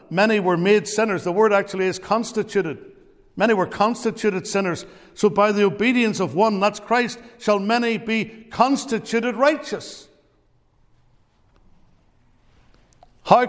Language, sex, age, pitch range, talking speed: English, male, 60-79, 180-210 Hz, 120 wpm